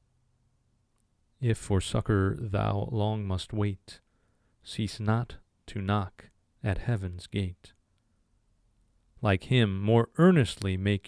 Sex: male